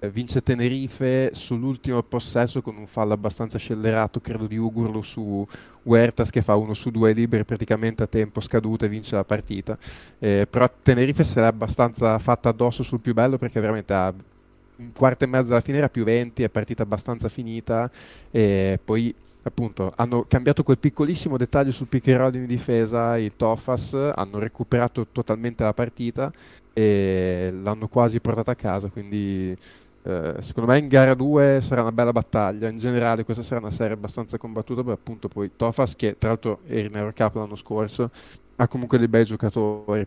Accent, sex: native, male